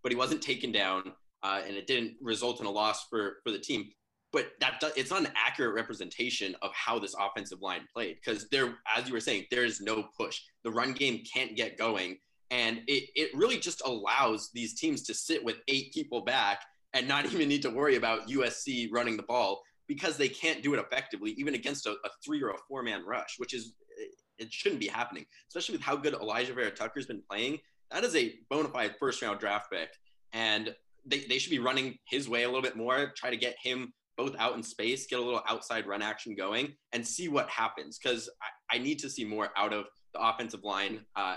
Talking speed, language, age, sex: 225 wpm, English, 20-39, male